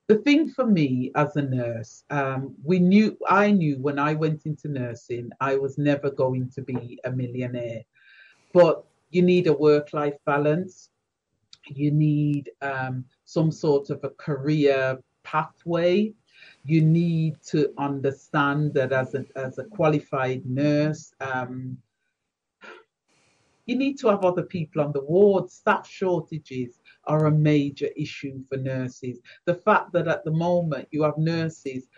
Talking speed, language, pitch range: 145 wpm, English, 140-190 Hz